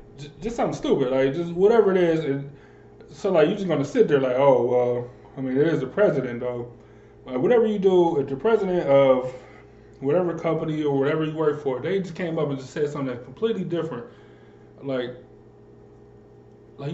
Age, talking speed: 20-39, 190 wpm